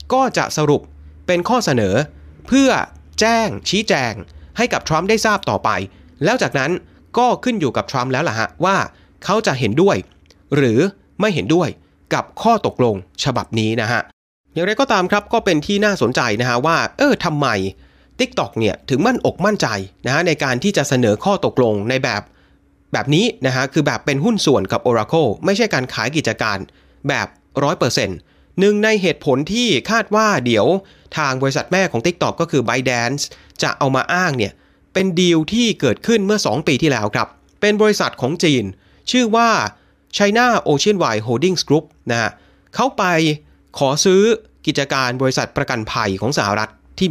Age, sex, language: 30-49, male, Thai